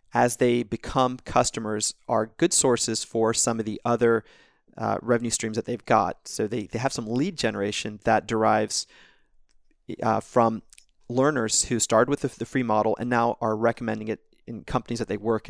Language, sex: English, male